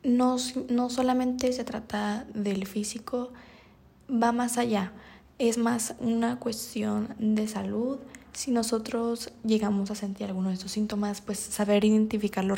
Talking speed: 135 wpm